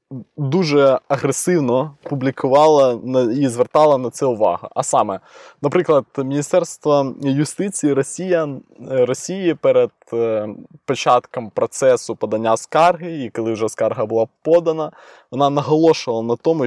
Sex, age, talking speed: male, 20-39, 105 wpm